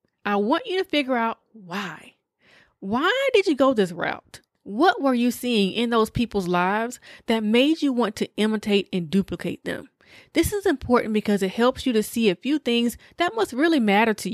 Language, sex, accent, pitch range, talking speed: English, female, American, 190-260 Hz, 195 wpm